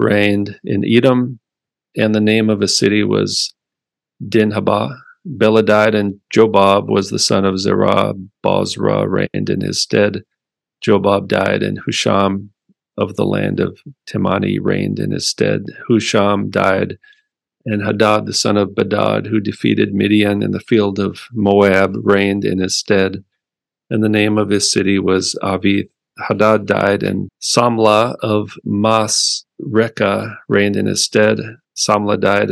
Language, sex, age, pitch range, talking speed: English, male, 40-59, 100-110 Hz, 145 wpm